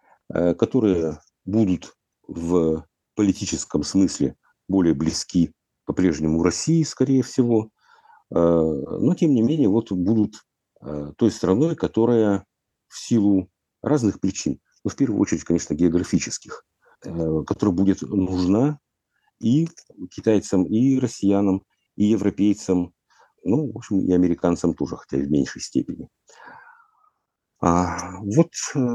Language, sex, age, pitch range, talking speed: Russian, male, 50-69, 90-130 Hz, 105 wpm